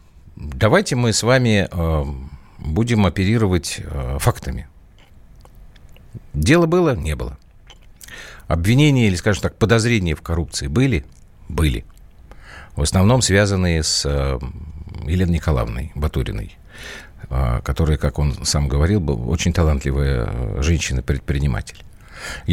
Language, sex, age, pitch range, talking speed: Russian, male, 50-69, 75-105 Hz, 95 wpm